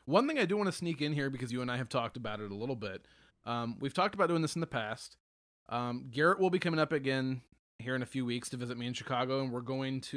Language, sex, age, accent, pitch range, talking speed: English, male, 30-49, American, 120-150 Hz, 295 wpm